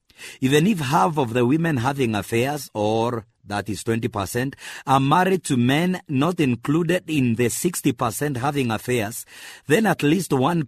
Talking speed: 150 wpm